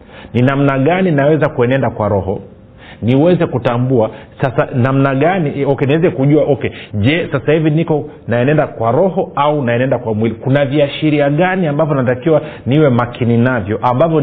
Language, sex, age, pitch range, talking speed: Swahili, male, 40-59, 120-155 Hz, 155 wpm